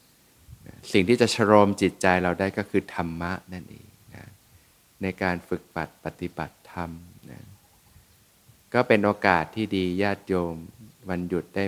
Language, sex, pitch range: Thai, male, 90-105 Hz